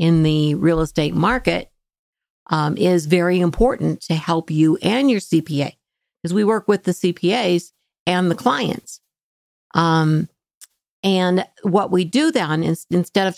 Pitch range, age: 150-190 Hz, 50-69